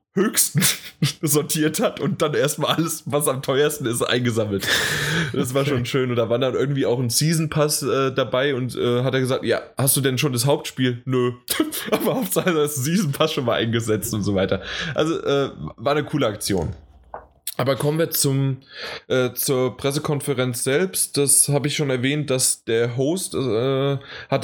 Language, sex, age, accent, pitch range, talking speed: German, male, 20-39, German, 120-150 Hz, 180 wpm